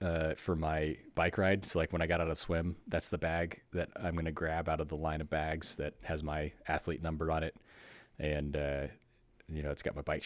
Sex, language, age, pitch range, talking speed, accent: male, English, 30-49, 75-85 Hz, 240 wpm, American